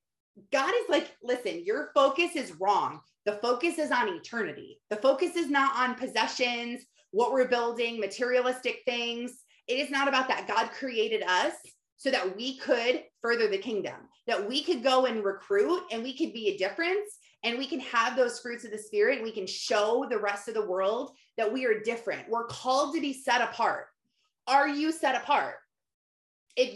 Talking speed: 185 wpm